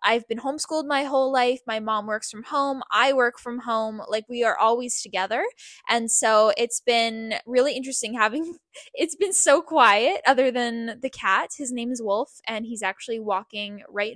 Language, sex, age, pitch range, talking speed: English, female, 10-29, 215-270 Hz, 185 wpm